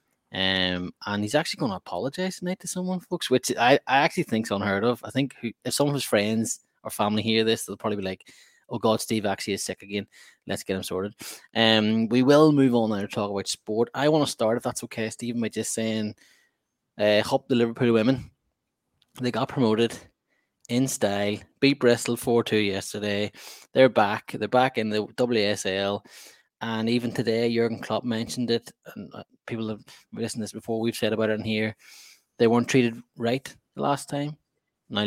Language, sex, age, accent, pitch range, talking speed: English, male, 20-39, Irish, 105-120 Hz, 195 wpm